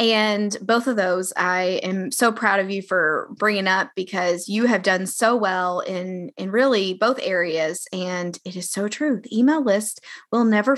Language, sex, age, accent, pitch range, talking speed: English, female, 20-39, American, 195-245 Hz, 190 wpm